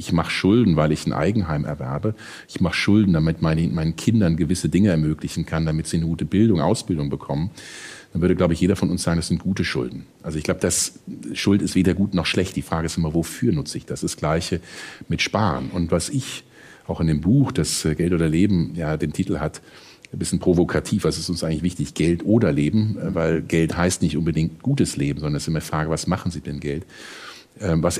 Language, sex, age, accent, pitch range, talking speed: German, male, 50-69, German, 80-100 Hz, 225 wpm